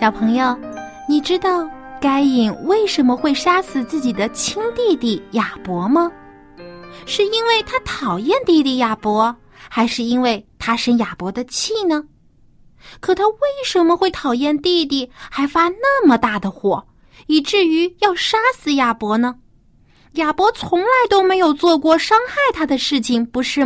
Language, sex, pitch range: Chinese, female, 220-360 Hz